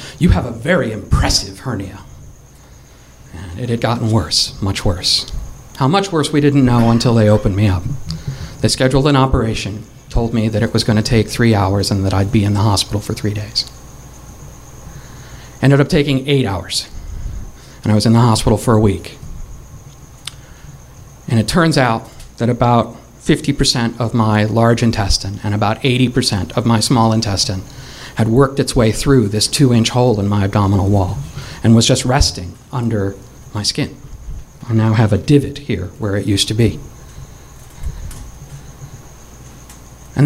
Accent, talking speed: American, 165 wpm